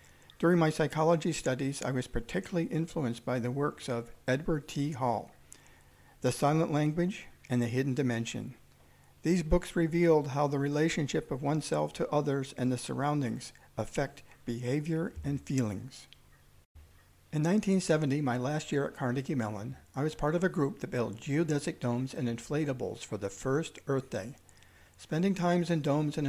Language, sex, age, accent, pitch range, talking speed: English, male, 60-79, American, 115-150 Hz, 155 wpm